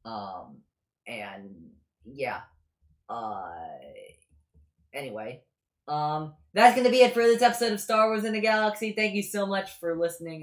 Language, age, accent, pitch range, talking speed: English, 30-49, American, 135-180 Hz, 145 wpm